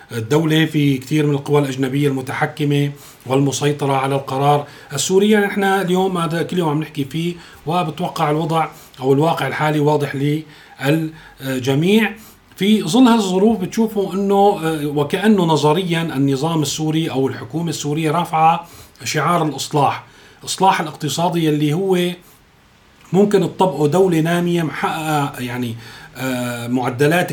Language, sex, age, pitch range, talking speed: Arabic, male, 40-59, 140-175 Hz, 115 wpm